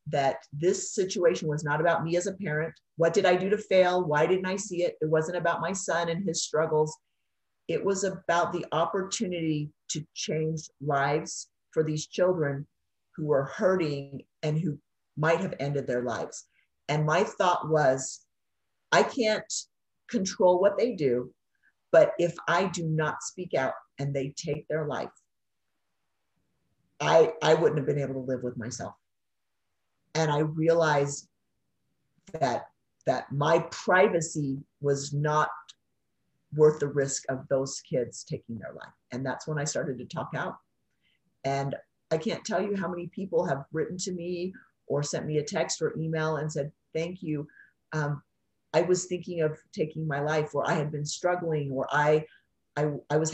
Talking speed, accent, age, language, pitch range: 170 wpm, American, 50-69, English, 140-170 Hz